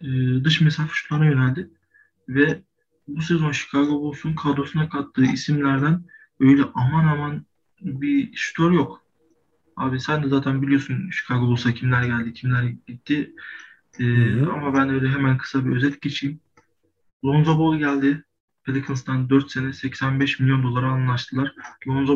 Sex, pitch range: male, 135-150 Hz